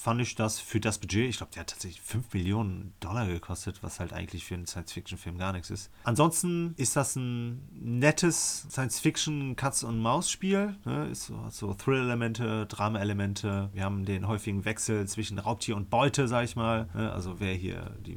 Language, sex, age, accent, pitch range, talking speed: German, male, 30-49, German, 95-115 Hz, 170 wpm